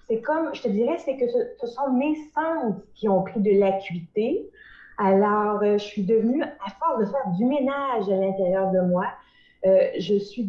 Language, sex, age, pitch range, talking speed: French, female, 30-49, 200-280 Hz, 200 wpm